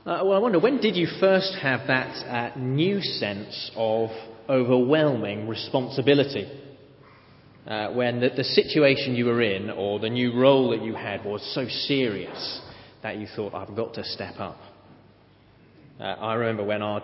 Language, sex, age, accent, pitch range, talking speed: English, male, 30-49, British, 110-135 Hz, 165 wpm